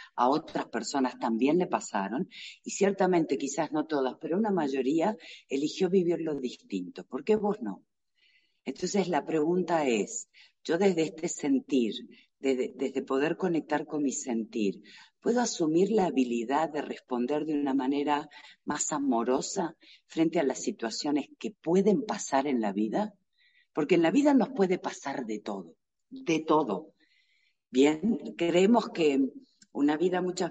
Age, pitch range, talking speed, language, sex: 50-69, 140-200 Hz, 145 wpm, Spanish, female